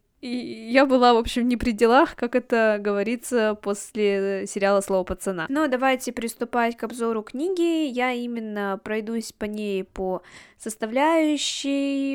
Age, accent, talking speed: 20-39, native, 140 wpm